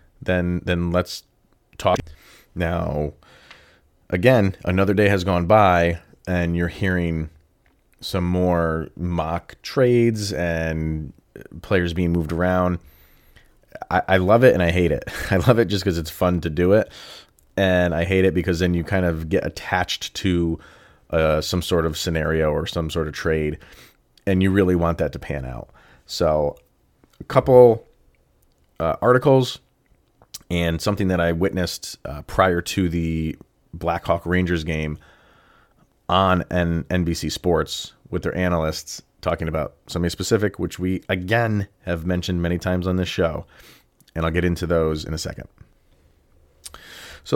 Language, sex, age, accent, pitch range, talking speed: English, male, 30-49, American, 80-95 Hz, 150 wpm